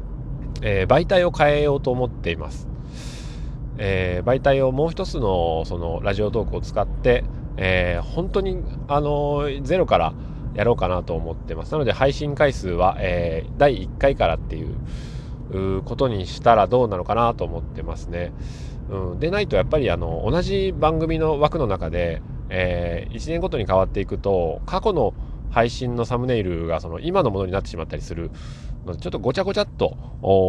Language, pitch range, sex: Japanese, 85-125 Hz, male